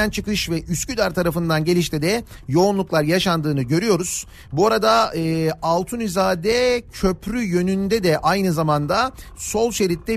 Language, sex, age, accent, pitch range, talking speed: Turkish, male, 40-59, native, 155-200 Hz, 120 wpm